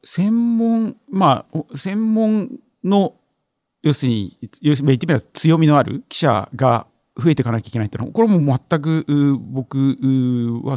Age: 50-69